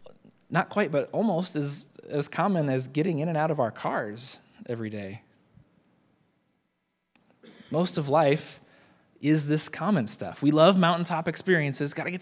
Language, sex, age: English, male, 20-39